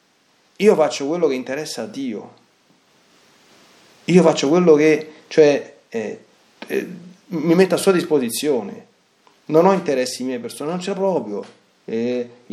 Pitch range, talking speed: 120-180 Hz, 140 wpm